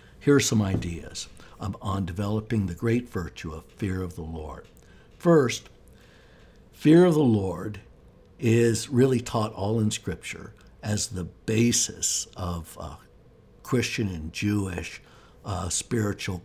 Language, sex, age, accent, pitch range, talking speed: English, male, 60-79, American, 95-120 Hz, 130 wpm